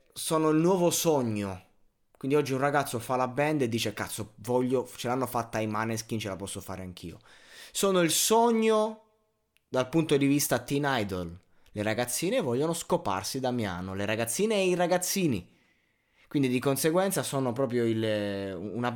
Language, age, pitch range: Italian, 20-39, 105-135 Hz